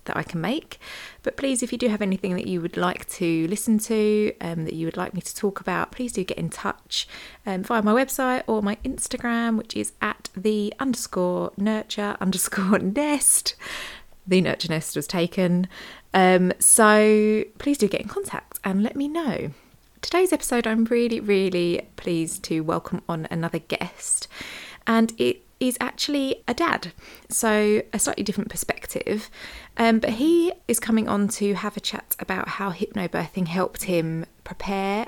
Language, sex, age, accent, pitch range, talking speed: English, female, 20-39, British, 180-225 Hz, 170 wpm